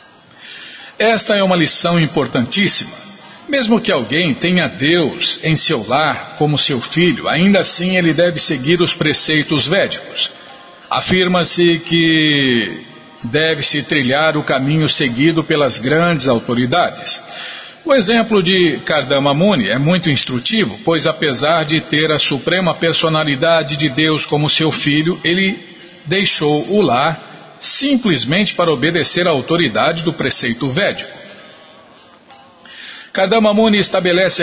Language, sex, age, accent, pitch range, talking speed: Portuguese, male, 50-69, Brazilian, 145-175 Hz, 115 wpm